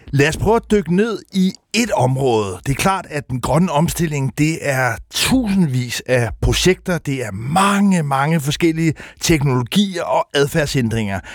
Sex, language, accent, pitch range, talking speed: male, Danish, native, 125-175 Hz, 155 wpm